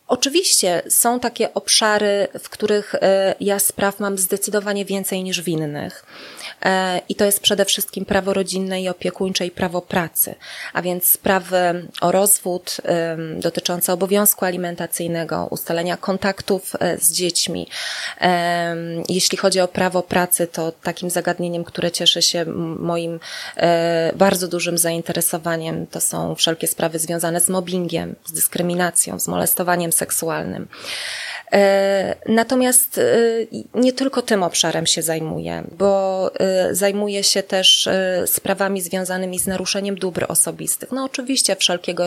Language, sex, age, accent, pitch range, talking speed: Polish, female, 20-39, native, 170-200 Hz, 120 wpm